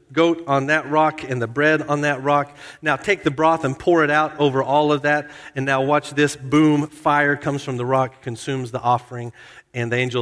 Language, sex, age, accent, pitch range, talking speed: English, male, 50-69, American, 120-155 Hz, 225 wpm